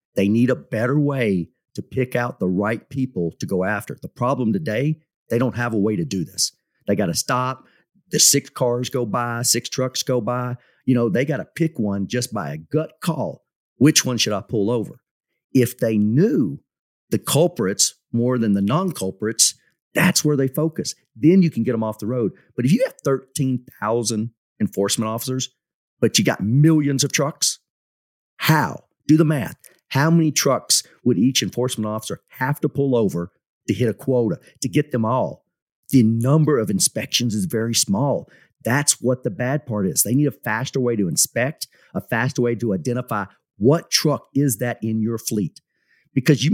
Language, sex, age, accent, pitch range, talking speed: English, male, 40-59, American, 115-150 Hz, 190 wpm